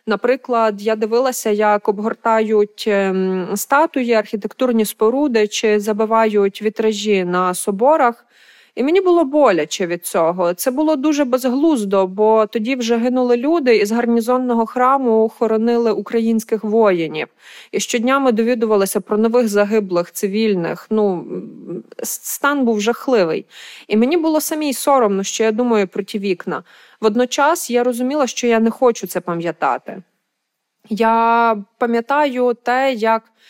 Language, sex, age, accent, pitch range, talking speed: Ukrainian, female, 30-49, native, 215-255 Hz, 125 wpm